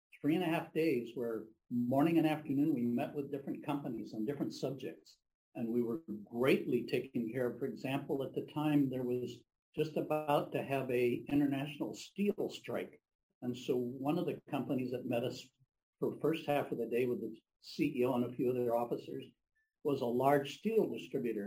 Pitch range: 125-155 Hz